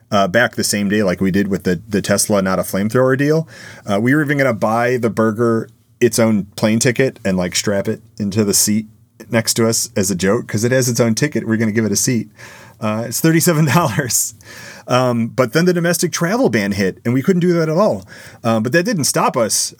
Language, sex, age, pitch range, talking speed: English, male, 30-49, 100-130 Hz, 235 wpm